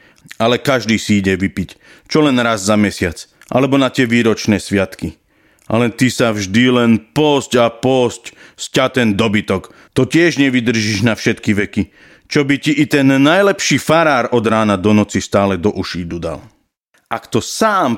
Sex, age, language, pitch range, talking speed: male, 40-59, Slovak, 105-135 Hz, 165 wpm